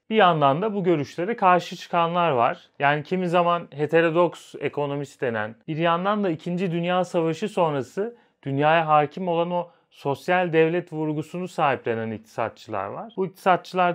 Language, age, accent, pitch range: Turkish, 40-59, native, 140-180 Hz